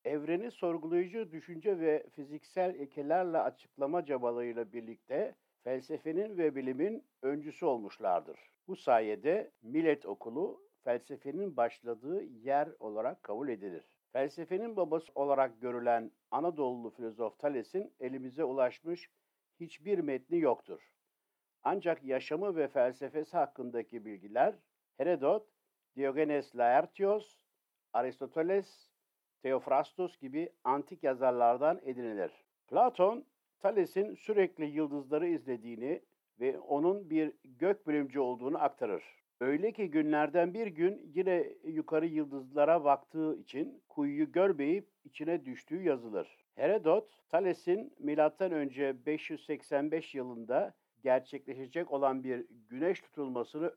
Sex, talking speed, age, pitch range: male, 100 wpm, 60-79, 135-190 Hz